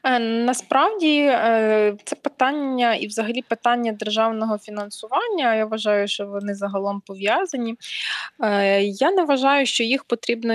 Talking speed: 115 wpm